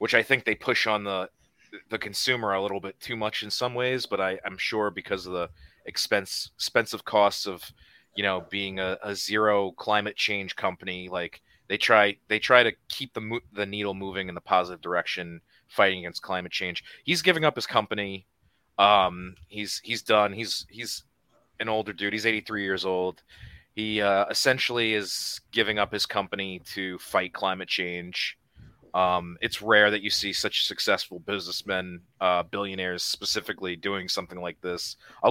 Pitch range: 90-110 Hz